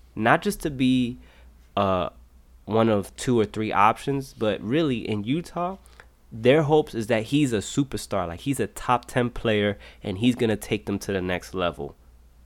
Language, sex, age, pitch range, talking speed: English, male, 20-39, 90-115 Hz, 180 wpm